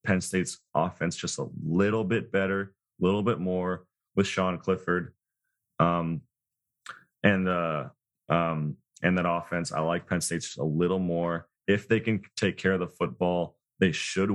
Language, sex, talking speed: English, male, 165 wpm